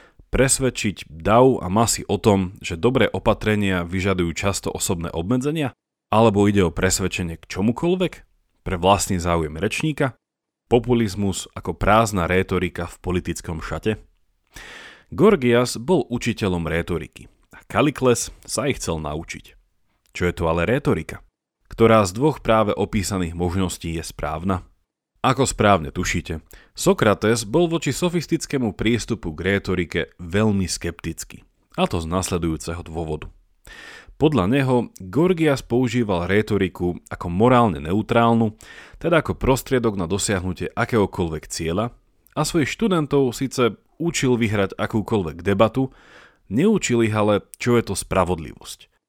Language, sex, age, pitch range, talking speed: Slovak, male, 40-59, 90-120 Hz, 120 wpm